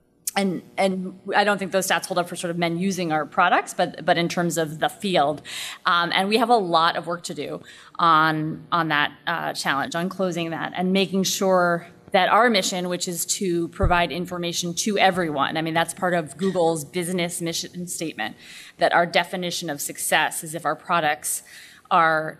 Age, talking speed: 20-39, 195 wpm